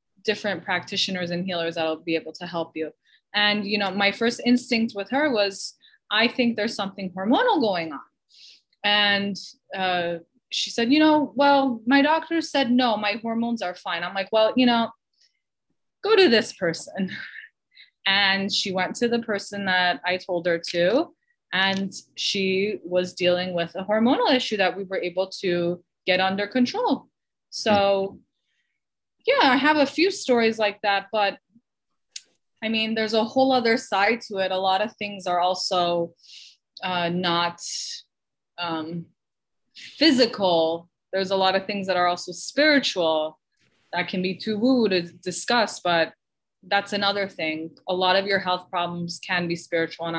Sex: female